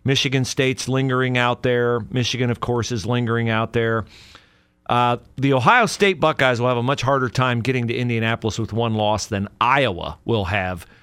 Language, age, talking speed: English, 40-59, 180 wpm